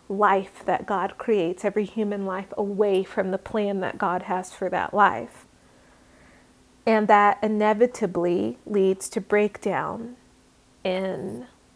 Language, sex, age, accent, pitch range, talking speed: English, female, 30-49, American, 200-220 Hz, 125 wpm